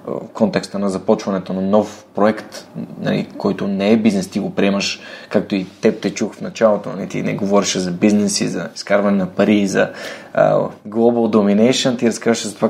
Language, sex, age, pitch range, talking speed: Bulgarian, male, 20-39, 105-150 Hz, 190 wpm